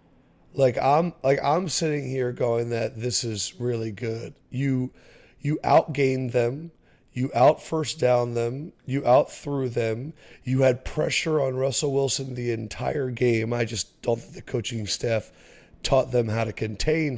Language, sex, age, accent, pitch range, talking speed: English, male, 30-49, American, 115-135 Hz, 160 wpm